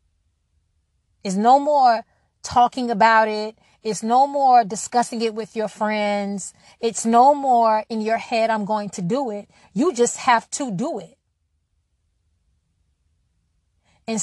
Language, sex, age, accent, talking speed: English, female, 30-49, American, 135 wpm